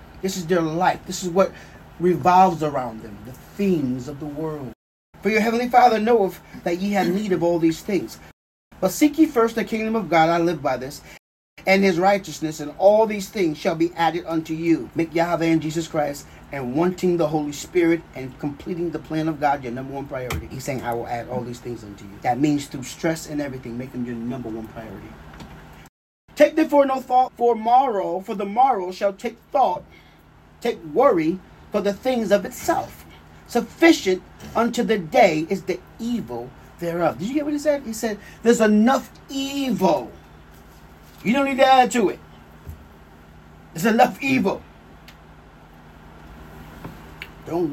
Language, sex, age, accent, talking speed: English, male, 30-49, American, 180 wpm